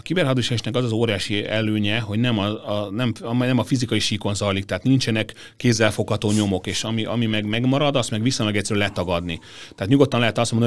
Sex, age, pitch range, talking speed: male, 30-49, 100-115 Hz, 195 wpm